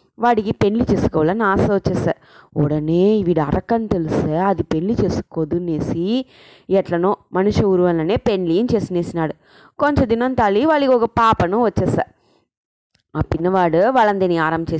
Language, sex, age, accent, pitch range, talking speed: English, female, 20-39, Indian, 160-210 Hz, 95 wpm